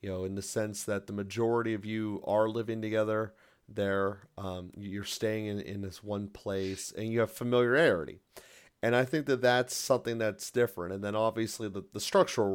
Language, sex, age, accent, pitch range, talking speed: English, male, 30-49, American, 100-115 Hz, 190 wpm